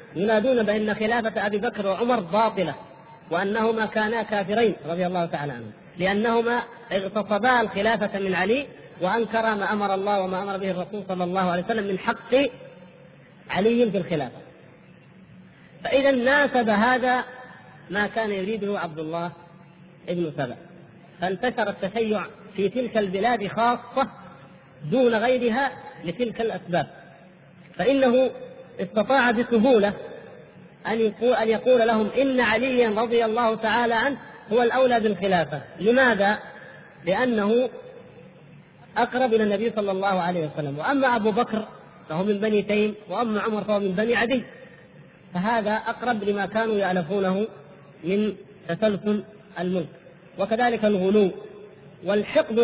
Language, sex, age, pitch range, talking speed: Arabic, female, 40-59, 180-230 Hz, 120 wpm